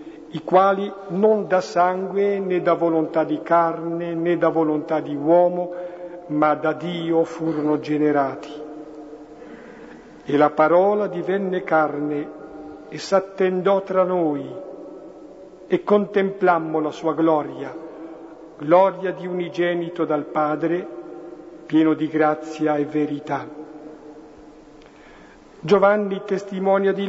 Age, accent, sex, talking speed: 50-69, native, male, 105 wpm